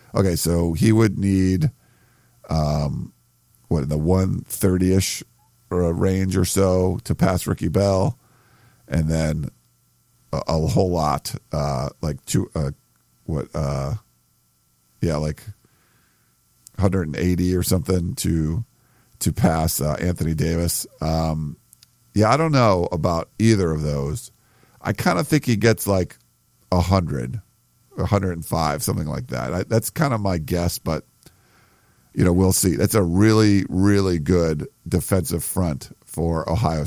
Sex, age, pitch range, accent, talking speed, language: male, 50-69, 80-105 Hz, American, 145 wpm, English